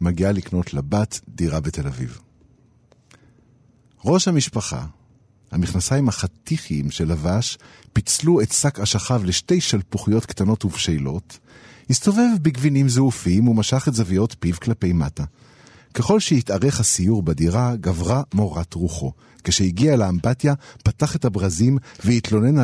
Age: 50-69